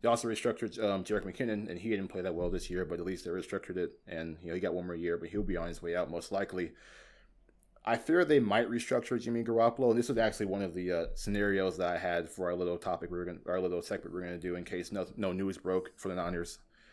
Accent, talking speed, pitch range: American, 275 wpm, 90-110 Hz